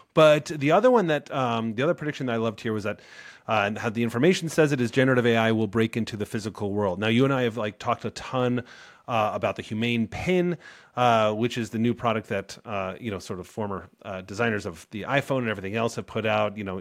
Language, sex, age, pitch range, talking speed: English, male, 30-49, 110-135 Hz, 250 wpm